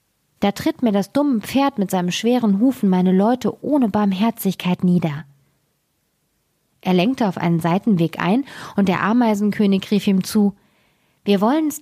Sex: female